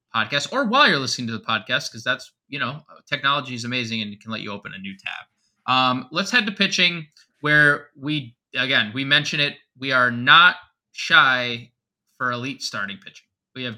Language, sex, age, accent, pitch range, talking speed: English, male, 20-39, American, 125-155 Hz, 195 wpm